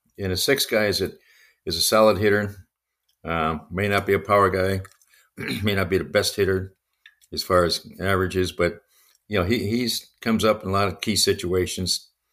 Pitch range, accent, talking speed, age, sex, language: 90-100 Hz, American, 195 wpm, 50-69, male, English